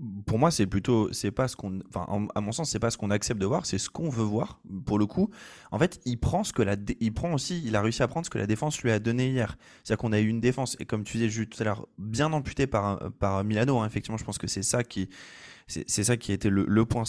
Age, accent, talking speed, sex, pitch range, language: 20-39, French, 300 wpm, male, 100-130 Hz, French